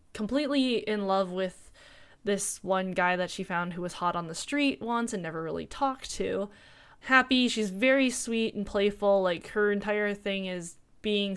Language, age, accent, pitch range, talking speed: English, 10-29, American, 180-215 Hz, 180 wpm